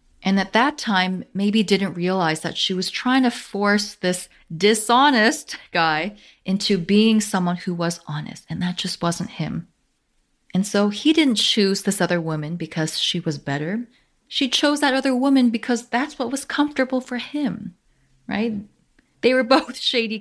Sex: female